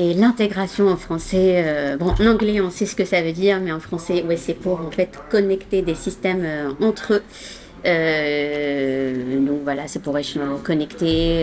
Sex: female